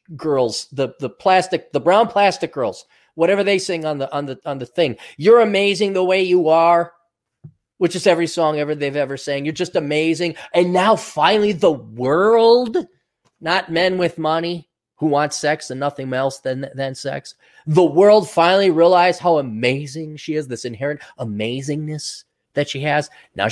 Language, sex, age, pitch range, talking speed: English, male, 30-49, 135-180 Hz, 175 wpm